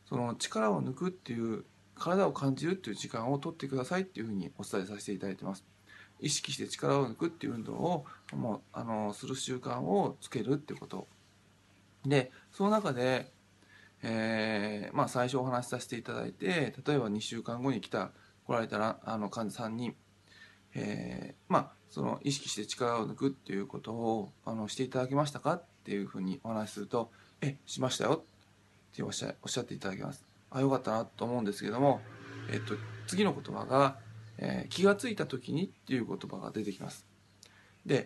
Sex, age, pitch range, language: male, 20-39, 105-145 Hz, Japanese